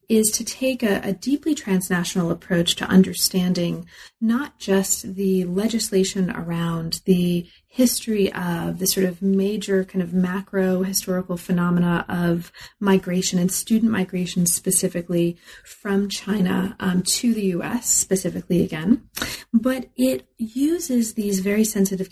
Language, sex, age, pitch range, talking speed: English, female, 30-49, 180-215 Hz, 125 wpm